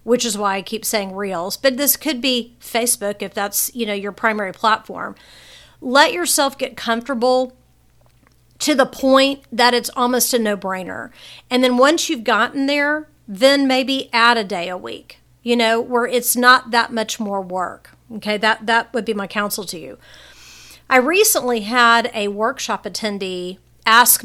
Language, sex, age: English, female, 40-59